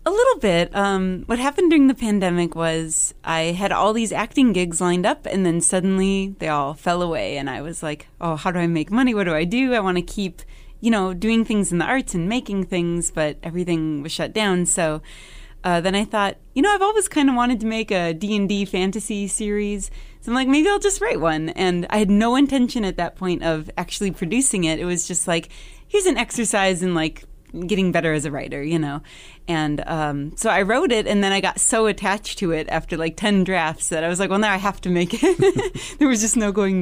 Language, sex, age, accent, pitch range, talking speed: English, female, 30-49, American, 170-225 Hz, 240 wpm